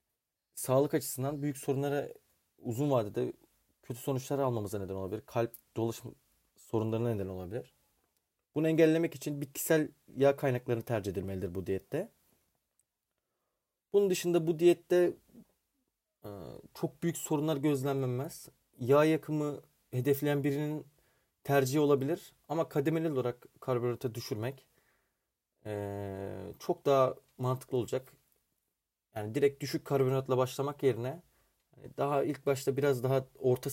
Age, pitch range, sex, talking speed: 30-49, 115-145 Hz, male, 110 wpm